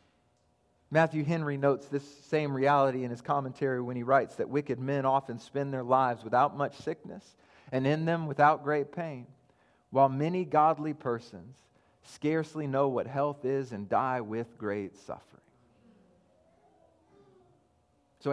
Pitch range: 130-160 Hz